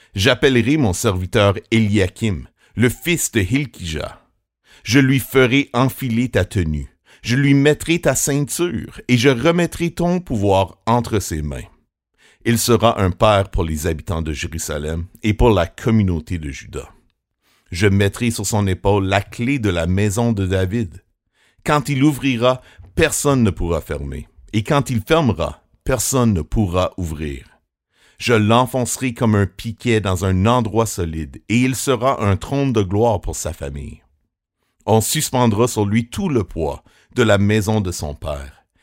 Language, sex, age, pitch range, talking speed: French, male, 60-79, 90-120 Hz, 155 wpm